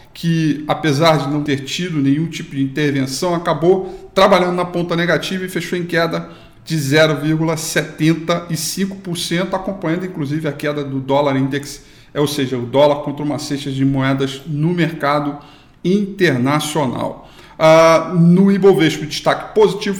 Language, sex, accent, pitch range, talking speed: Portuguese, male, Brazilian, 145-185 Hz, 140 wpm